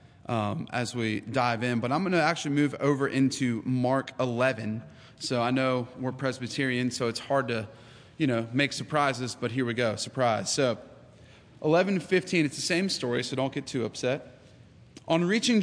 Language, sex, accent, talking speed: English, male, American, 185 wpm